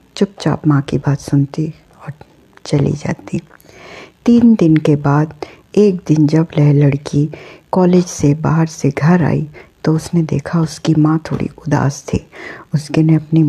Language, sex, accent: Hindi, female, native